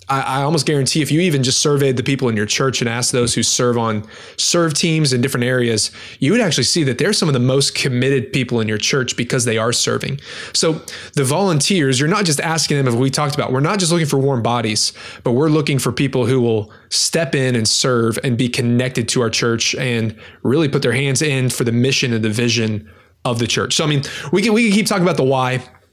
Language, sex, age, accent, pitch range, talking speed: English, male, 20-39, American, 120-150 Hz, 245 wpm